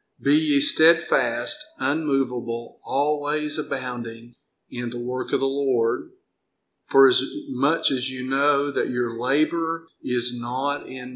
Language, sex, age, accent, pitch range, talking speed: English, male, 50-69, American, 130-165 Hz, 130 wpm